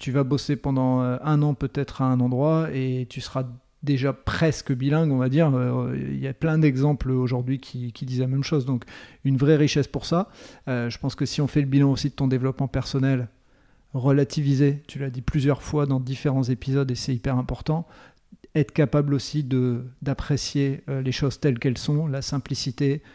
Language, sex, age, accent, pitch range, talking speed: French, male, 40-59, French, 130-145 Hz, 195 wpm